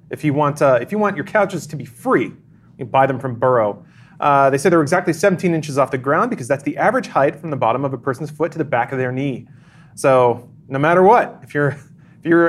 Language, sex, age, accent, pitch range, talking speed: English, male, 30-49, American, 130-165 Hz, 260 wpm